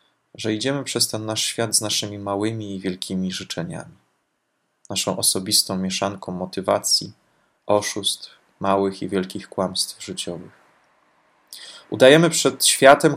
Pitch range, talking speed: 95-120 Hz, 115 wpm